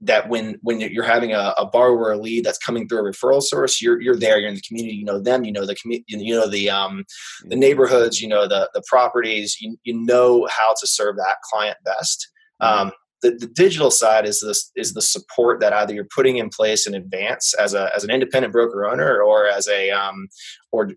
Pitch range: 105-135 Hz